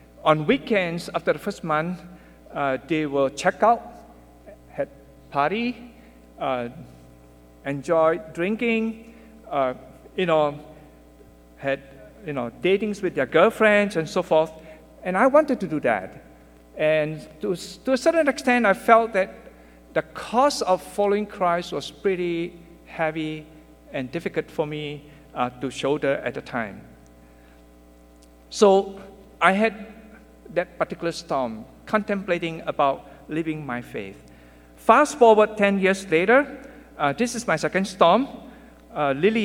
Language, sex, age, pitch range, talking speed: English, male, 60-79, 135-200 Hz, 130 wpm